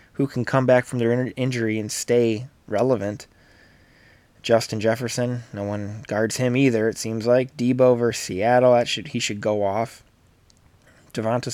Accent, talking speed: American, 155 wpm